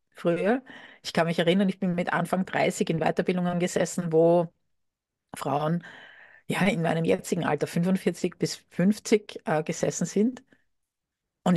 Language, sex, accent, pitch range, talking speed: German, female, Austrian, 160-195 Hz, 130 wpm